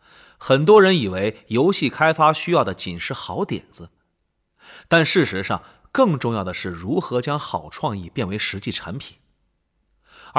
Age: 30-49